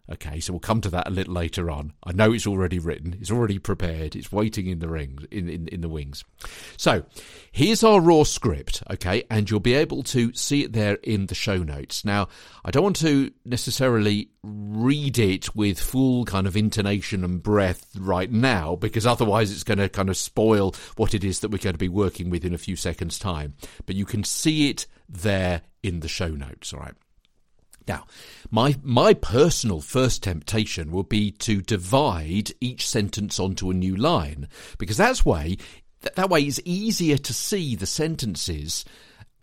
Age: 50-69